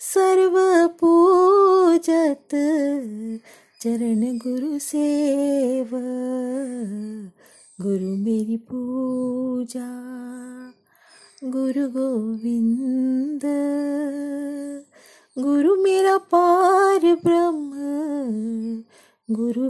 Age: 20-39